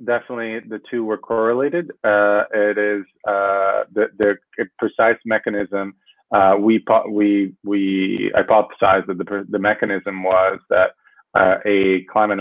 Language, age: Romanian, 30-49